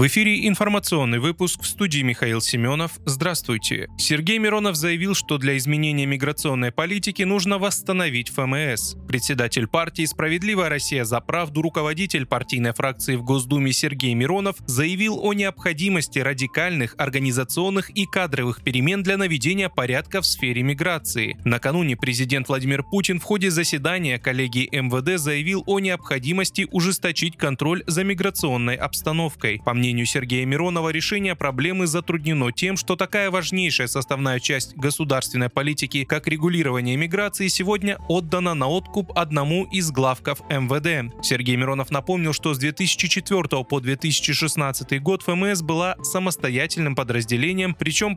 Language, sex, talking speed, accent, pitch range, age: Russian, male, 130 wpm, native, 135-185 Hz, 20-39